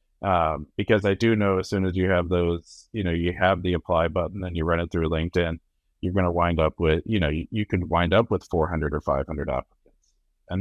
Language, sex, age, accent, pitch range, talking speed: English, male, 30-49, American, 80-100 Hz, 245 wpm